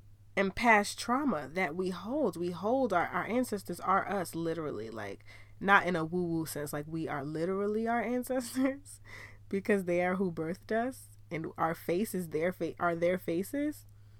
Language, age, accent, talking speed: English, 20-39, American, 165 wpm